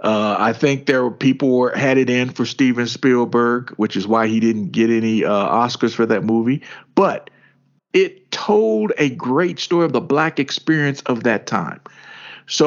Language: English